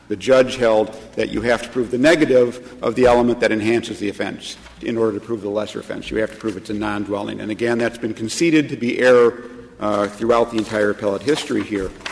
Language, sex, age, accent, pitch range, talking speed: English, male, 50-69, American, 110-130 Hz, 230 wpm